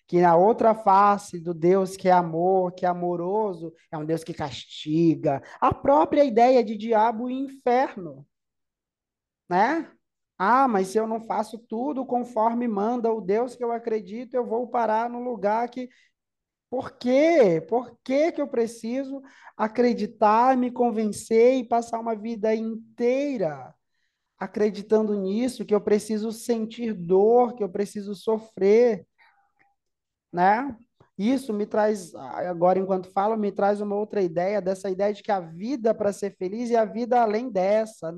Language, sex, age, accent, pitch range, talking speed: Portuguese, male, 20-39, Brazilian, 195-240 Hz, 150 wpm